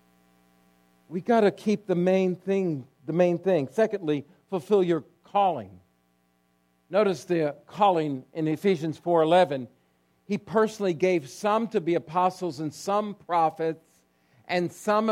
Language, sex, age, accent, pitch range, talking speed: English, male, 50-69, American, 130-205 Hz, 125 wpm